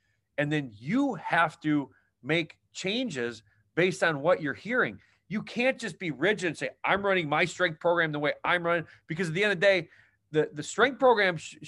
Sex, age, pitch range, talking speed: male, 40-59, 130-185 Hz, 205 wpm